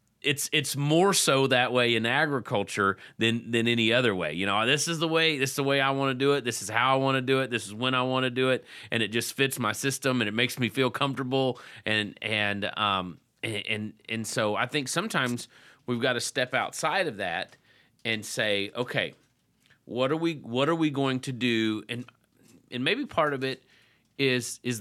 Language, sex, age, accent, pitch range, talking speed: English, male, 30-49, American, 110-140 Hz, 225 wpm